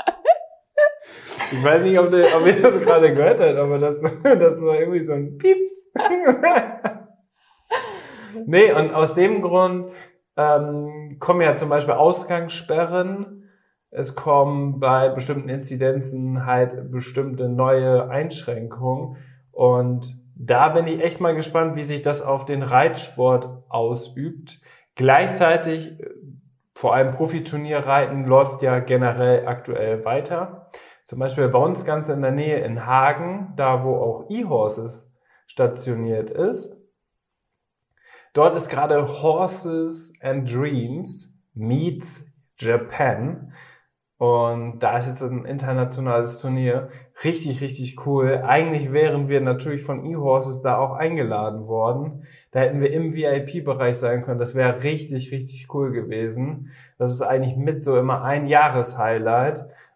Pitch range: 130-165 Hz